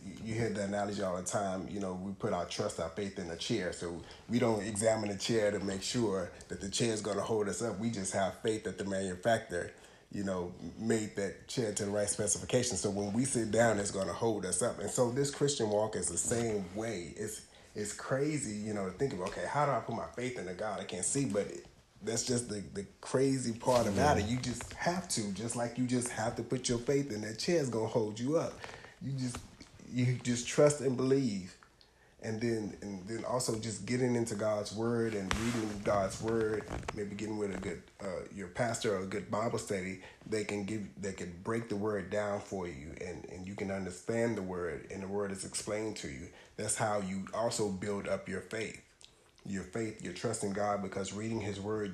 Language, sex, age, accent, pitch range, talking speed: English, male, 30-49, American, 100-115 Hz, 230 wpm